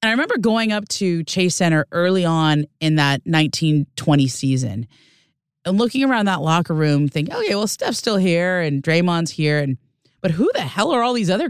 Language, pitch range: English, 140-180 Hz